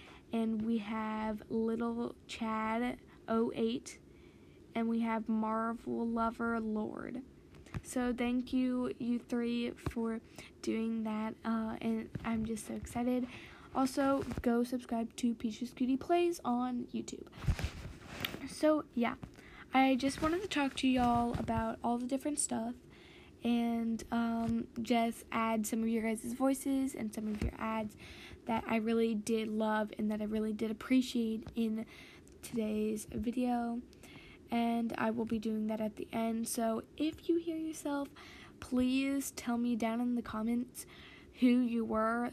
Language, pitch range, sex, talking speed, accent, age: English, 220-245 Hz, female, 145 wpm, American, 10-29